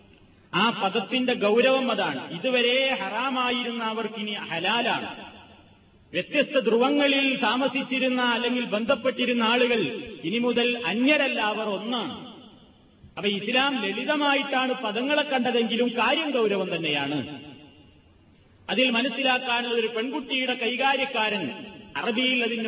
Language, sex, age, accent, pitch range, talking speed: Malayalam, male, 30-49, native, 195-255 Hz, 85 wpm